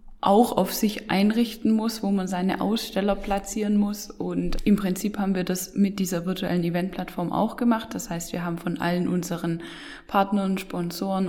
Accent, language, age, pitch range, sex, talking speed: German, German, 10-29, 175-225 Hz, female, 170 wpm